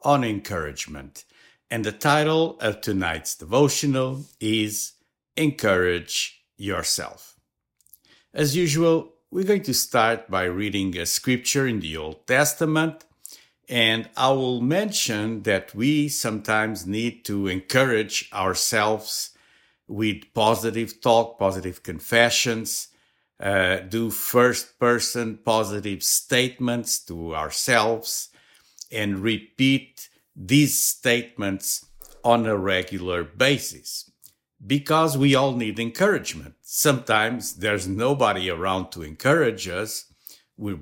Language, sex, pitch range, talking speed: English, male, 95-125 Hz, 100 wpm